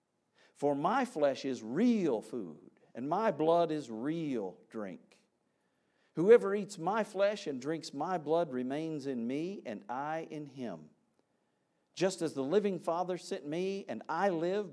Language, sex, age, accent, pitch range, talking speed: English, male, 50-69, American, 125-170 Hz, 150 wpm